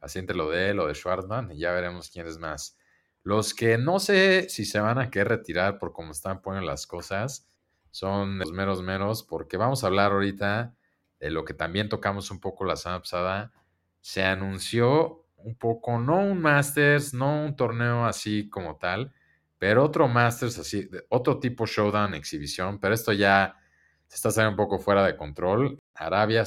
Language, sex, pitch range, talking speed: Spanish, male, 90-120 Hz, 185 wpm